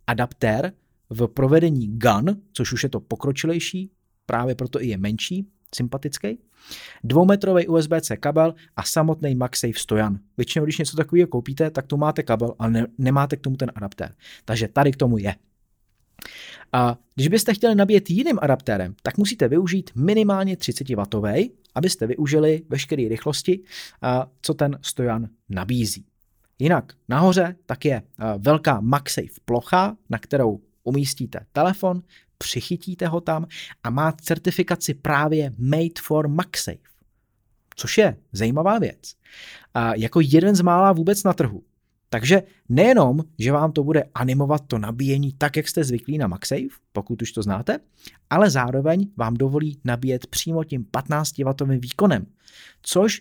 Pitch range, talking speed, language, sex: 120-165 Hz, 140 wpm, Czech, male